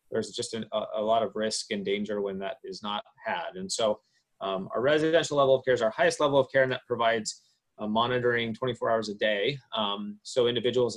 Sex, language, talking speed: male, English, 225 wpm